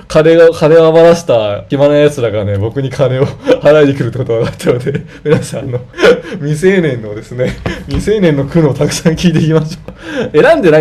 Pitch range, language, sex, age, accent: 105-165 Hz, Japanese, male, 20-39, native